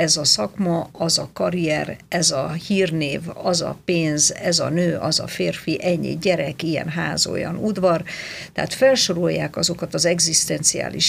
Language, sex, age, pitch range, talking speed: Hungarian, female, 50-69, 160-190 Hz, 155 wpm